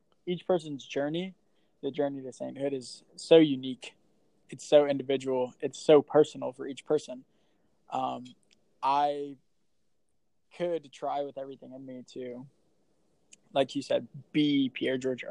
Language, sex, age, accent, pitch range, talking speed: English, male, 20-39, American, 130-150 Hz, 135 wpm